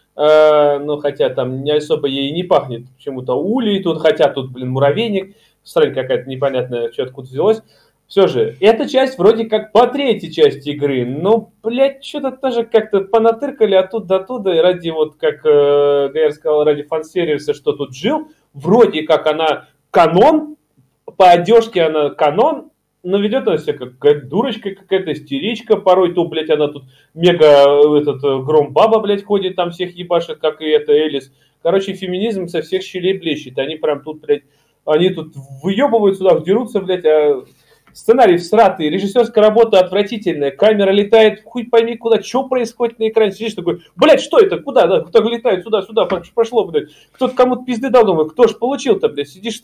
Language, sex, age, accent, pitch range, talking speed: Russian, male, 30-49, native, 155-230 Hz, 175 wpm